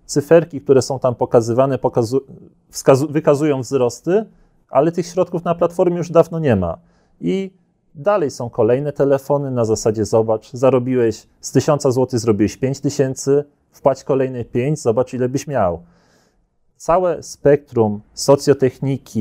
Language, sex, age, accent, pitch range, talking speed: Polish, male, 30-49, native, 125-155 Hz, 135 wpm